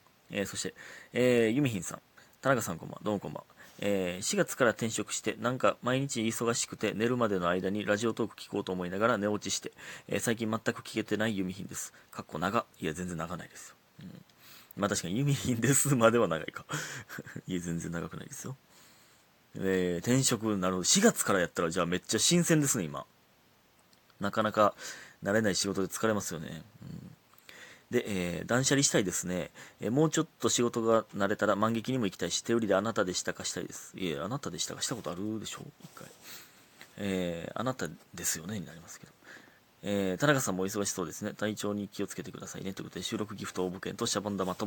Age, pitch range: 30-49, 95-120 Hz